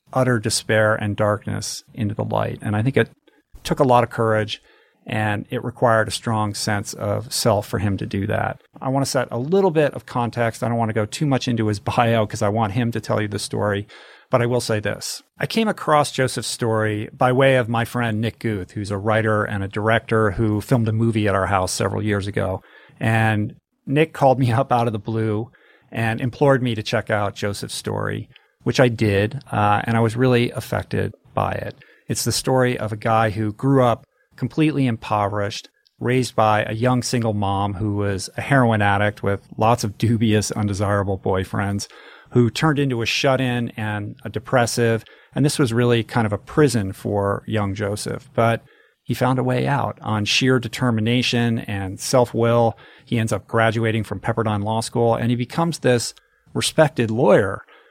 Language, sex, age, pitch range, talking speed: English, male, 40-59, 105-125 Hz, 195 wpm